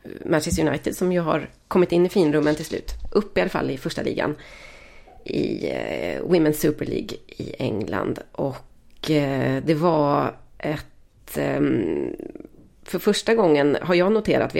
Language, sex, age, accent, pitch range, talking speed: Swedish, female, 30-49, native, 155-195 Hz, 145 wpm